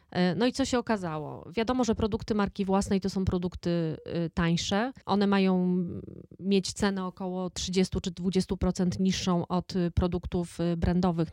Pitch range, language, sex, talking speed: 180-210 Hz, Polish, female, 140 wpm